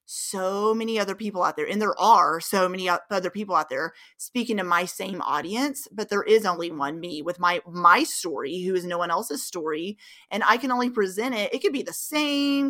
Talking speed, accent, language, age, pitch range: 220 wpm, American, English, 30-49, 175-225 Hz